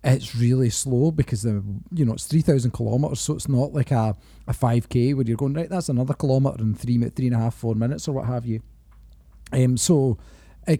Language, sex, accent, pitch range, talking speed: English, male, British, 115-140 Hz, 215 wpm